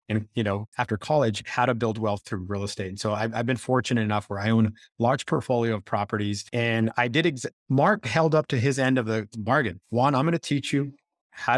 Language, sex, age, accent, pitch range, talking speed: English, male, 30-49, American, 110-135 Hz, 245 wpm